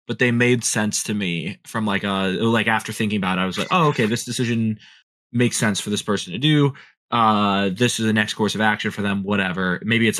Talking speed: 240 wpm